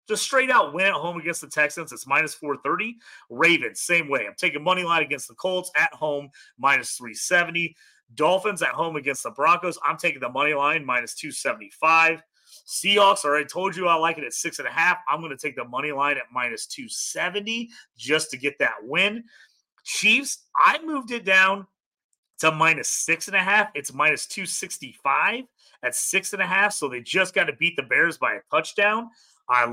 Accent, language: American, English